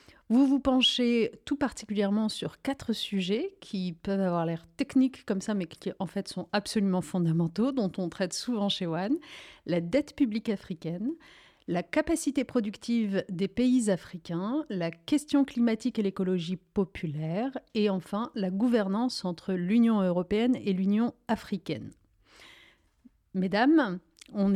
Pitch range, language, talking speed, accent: 185-250 Hz, French, 135 wpm, French